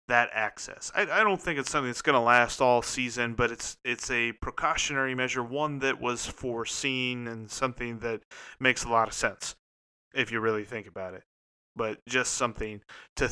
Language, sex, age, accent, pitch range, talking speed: English, male, 30-49, American, 115-135 Hz, 190 wpm